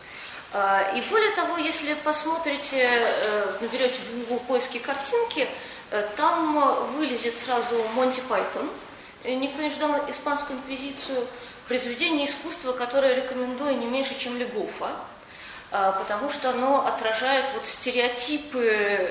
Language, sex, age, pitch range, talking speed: Russian, female, 20-39, 225-290 Hz, 110 wpm